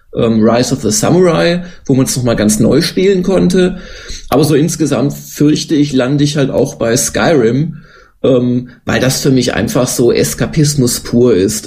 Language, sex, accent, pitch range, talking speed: German, male, German, 125-145 Hz, 165 wpm